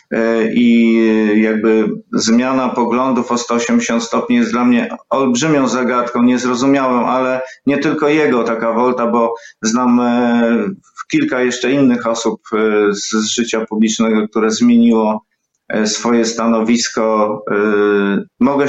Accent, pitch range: native, 110-125 Hz